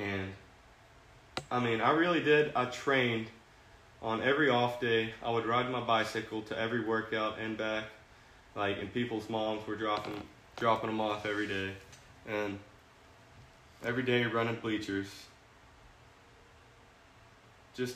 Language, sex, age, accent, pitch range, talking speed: English, male, 20-39, American, 100-125 Hz, 130 wpm